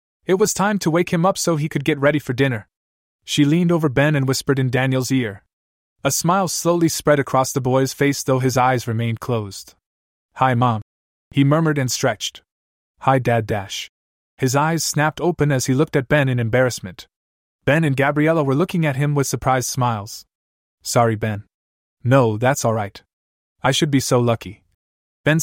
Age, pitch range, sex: 20-39, 115-155 Hz, male